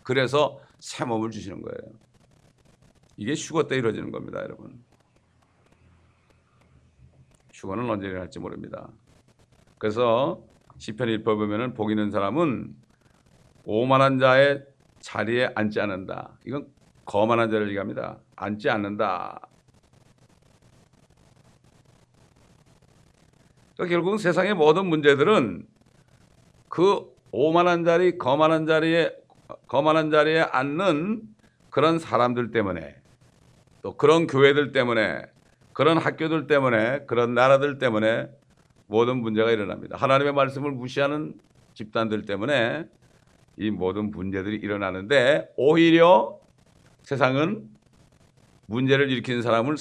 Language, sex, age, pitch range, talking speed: English, male, 60-79, 110-150 Hz, 90 wpm